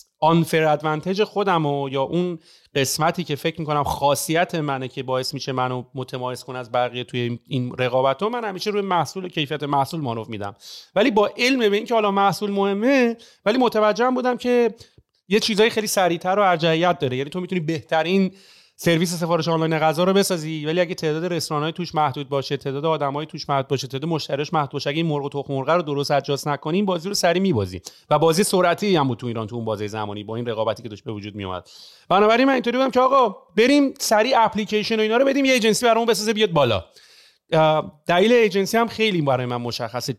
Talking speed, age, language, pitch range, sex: 195 wpm, 30-49, Persian, 140-200 Hz, male